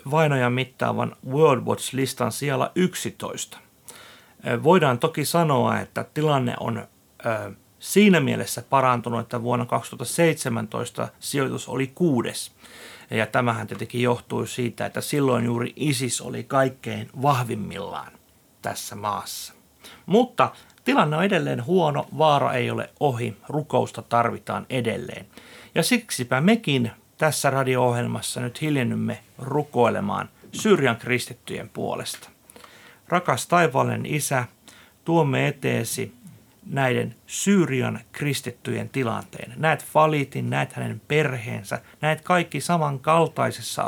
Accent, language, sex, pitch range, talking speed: native, Finnish, male, 120-155 Hz, 105 wpm